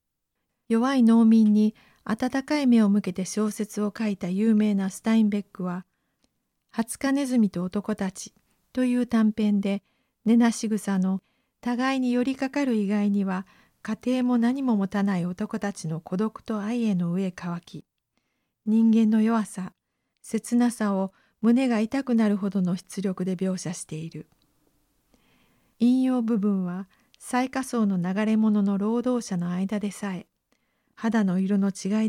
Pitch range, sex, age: 195-240 Hz, female, 50-69